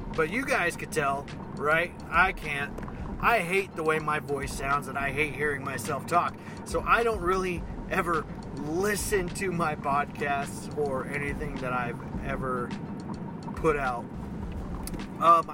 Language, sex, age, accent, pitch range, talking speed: English, male, 20-39, American, 150-195 Hz, 145 wpm